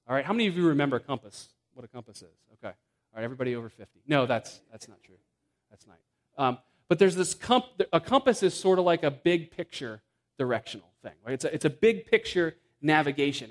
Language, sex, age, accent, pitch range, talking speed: English, male, 30-49, American, 145-190 Hz, 220 wpm